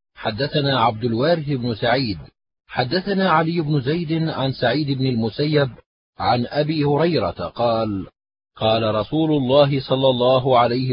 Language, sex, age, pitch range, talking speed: Arabic, male, 40-59, 120-145 Hz, 125 wpm